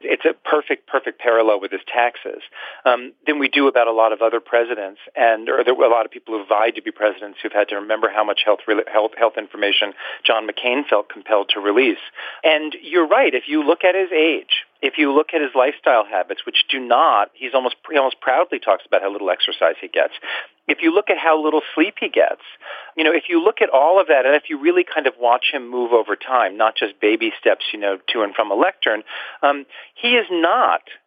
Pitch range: 115-175 Hz